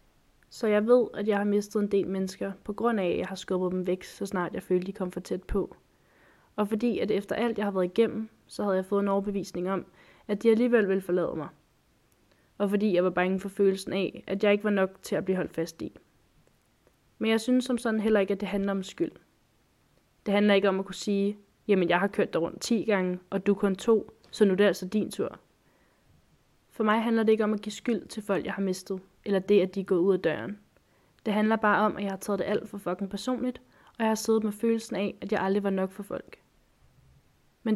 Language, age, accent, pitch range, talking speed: Danish, 20-39, native, 190-215 Hz, 250 wpm